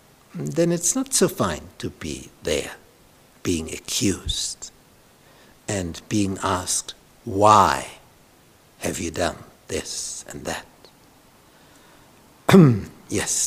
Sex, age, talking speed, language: male, 60-79, 95 wpm, English